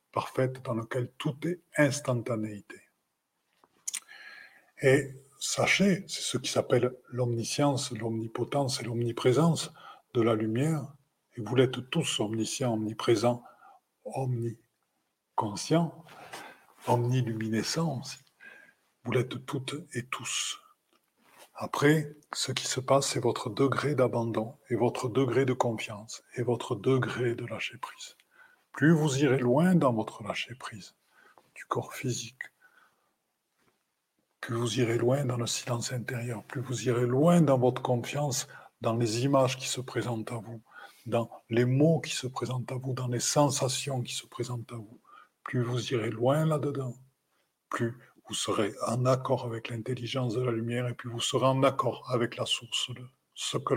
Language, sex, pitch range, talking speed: French, male, 120-140 Hz, 145 wpm